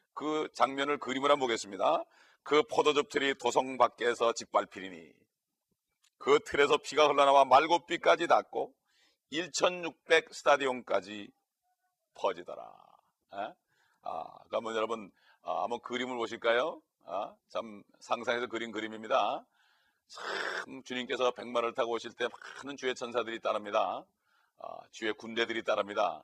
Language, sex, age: Korean, male, 40-59